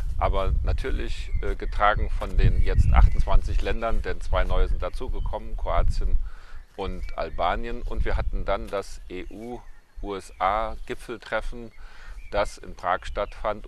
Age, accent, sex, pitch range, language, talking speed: 40-59, German, male, 90-105 Hz, German, 115 wpm